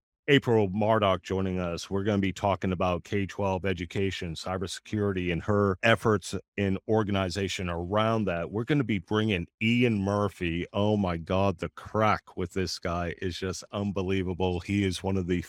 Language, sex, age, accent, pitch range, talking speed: English, male, 40-59, American, 90-110 Hz, 165 wpm